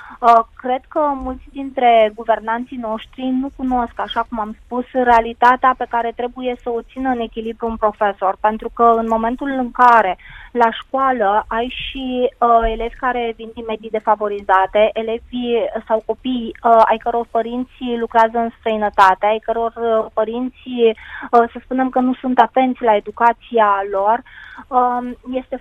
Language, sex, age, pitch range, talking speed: Romanian, female, 20-39, 225-245 Hz, 145 wpm